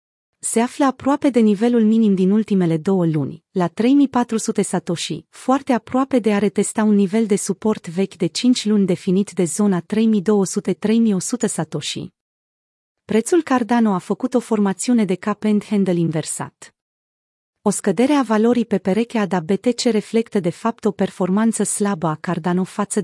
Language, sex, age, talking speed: Romanian, female, 30-49, 155 wpm